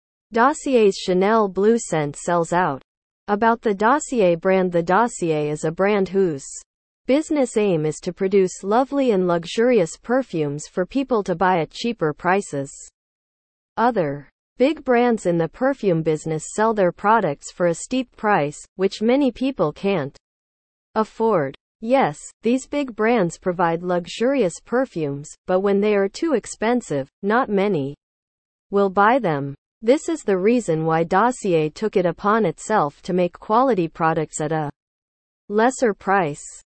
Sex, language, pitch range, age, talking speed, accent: female, English, 160-230 Hz, 40-59, 140 wpm, American